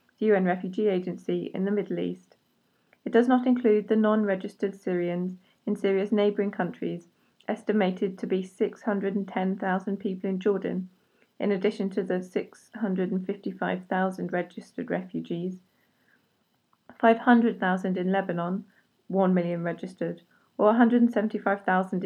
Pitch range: 185-215 Hz